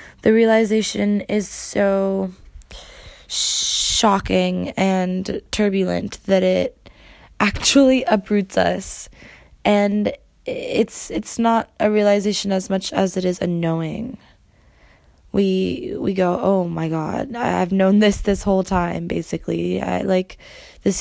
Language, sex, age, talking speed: English, female, 20-39, 115 wpm